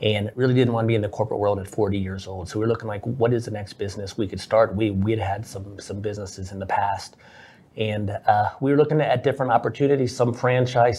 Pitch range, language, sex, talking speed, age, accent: 105-120 Hz, English, male, 250 wpm, 30-49, American